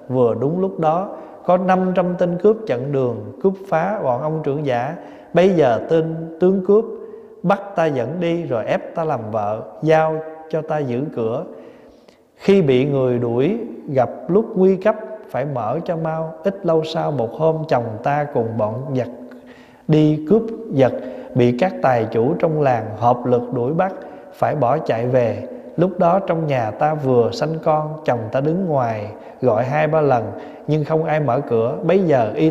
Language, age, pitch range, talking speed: Vietnamese, 20-39, 125-170 Hz, 180 wpm